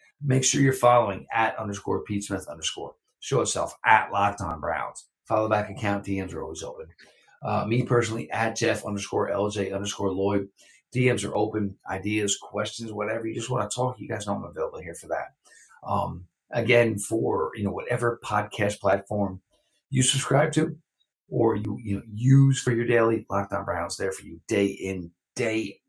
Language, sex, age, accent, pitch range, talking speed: English, male, 50-69, American, 100-120 Hz, 180 wpm